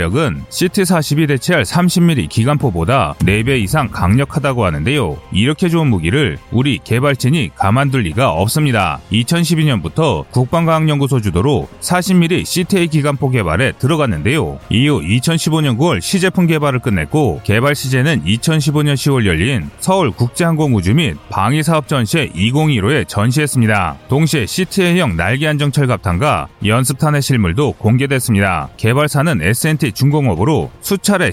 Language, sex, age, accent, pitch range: Korean, male, 30-49, native, 115-165 Hz